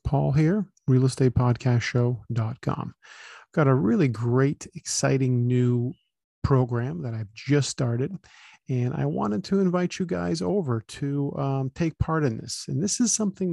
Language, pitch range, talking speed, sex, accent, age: English, 120-145 Hz, 145 wpm, male, American, 40-59